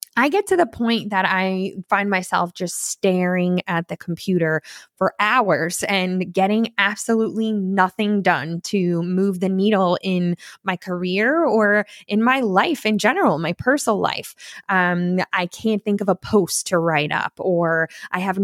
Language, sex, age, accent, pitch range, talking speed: English, female, 20-39, American, 185-225 Hz, 165 wpm